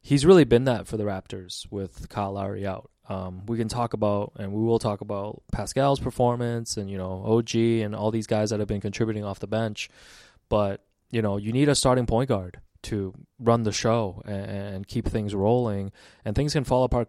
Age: 20-39